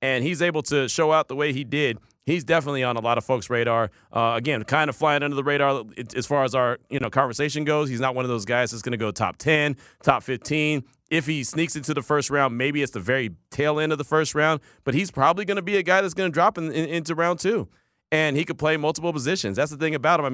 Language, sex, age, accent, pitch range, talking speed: English, male, 30-49, American, 120-155 Hz, 275 wpm